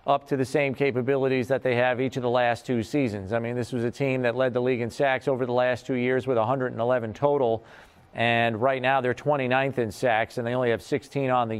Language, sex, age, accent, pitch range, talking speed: English, male, 40-59, American, 125-155 Hz, 250 wpm